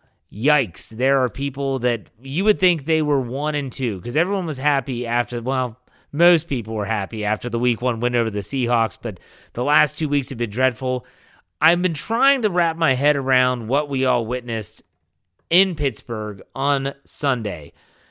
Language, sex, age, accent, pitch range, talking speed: English, male, 30-49, American, 120-165 Hz, 180 wpm